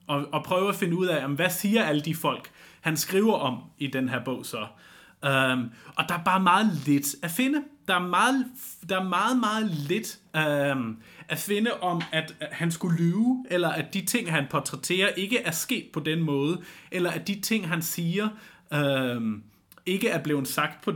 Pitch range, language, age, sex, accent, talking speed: 135-185 Hz, Danish, 30-49, male, native, 180 wpm